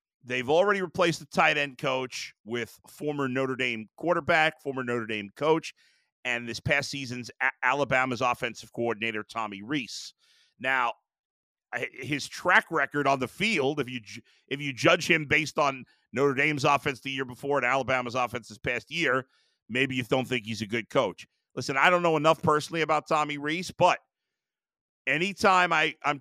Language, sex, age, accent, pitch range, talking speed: English, male, 50-69, American, 120-155 Hz, 165 wpm